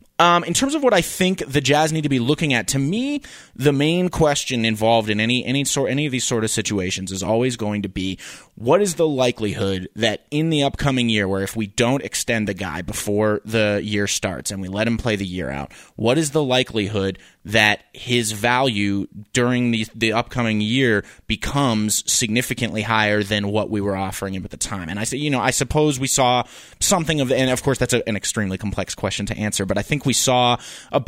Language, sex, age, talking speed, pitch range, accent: English, male, 30-49, 225 wpm, 105-130 Hz, American